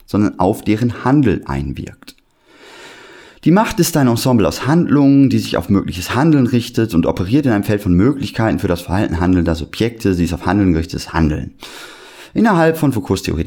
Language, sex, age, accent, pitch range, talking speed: German, male, 30-49, German, 85-115 Hz, 185 wpm